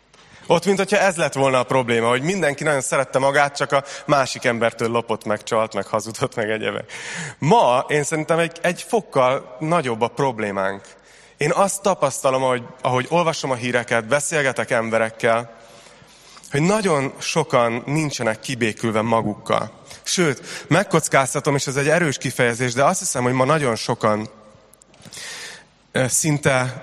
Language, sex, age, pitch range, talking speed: Hungarian, male, 30-49, 115-150 Hz, 140 wpm